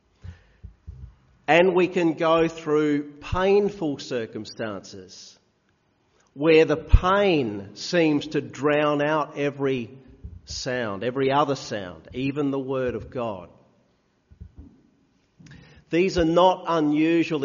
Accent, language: Australian, English